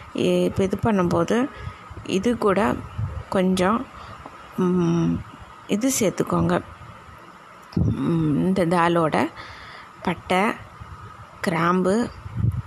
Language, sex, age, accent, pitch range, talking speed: Tamil, female, 20-39, native, 175-205 Hz, 55 wpm